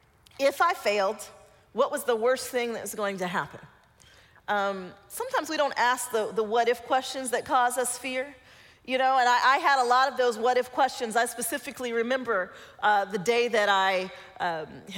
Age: 40-59